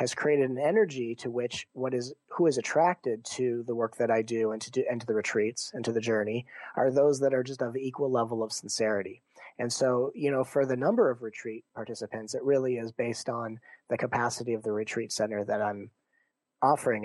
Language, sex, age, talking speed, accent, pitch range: English, male, 30-49, 220 wpm, American, 115-130 Hz